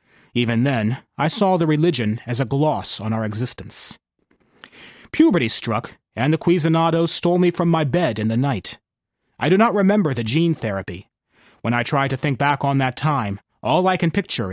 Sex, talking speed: male, 185 wpm